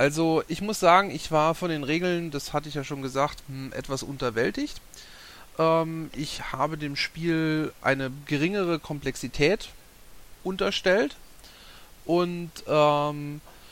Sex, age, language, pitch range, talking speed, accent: male, 30-49, German, 135-170 Hz, 115 wpm, German